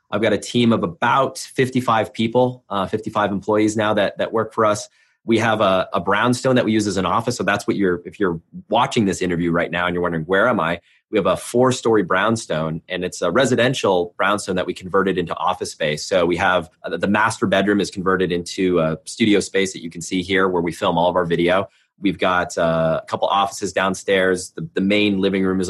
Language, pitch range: English, 95-115 Hz